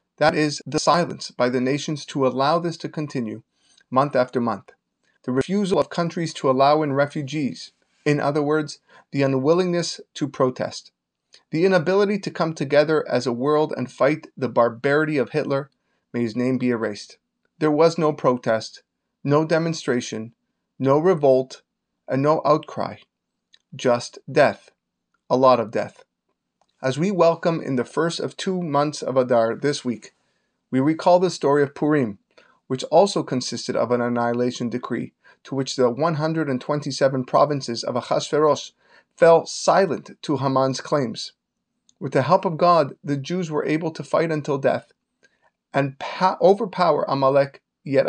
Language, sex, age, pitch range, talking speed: English, male, 30-49, 130-160 Hz, 150 wpm